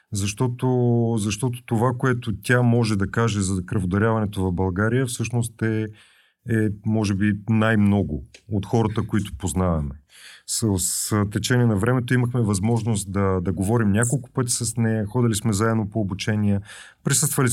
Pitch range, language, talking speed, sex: 100-120 Hz, Bulgarian, 145 wpm, male